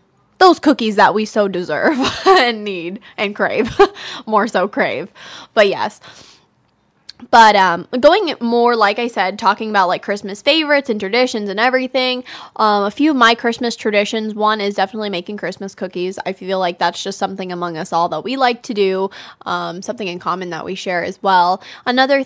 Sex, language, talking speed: female, English, 185 wpm